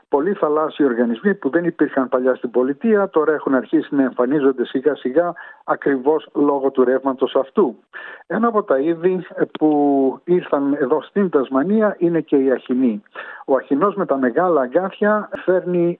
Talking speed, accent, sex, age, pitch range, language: 150 wpm, native, male, 60-79, 130-175 Hz, Greek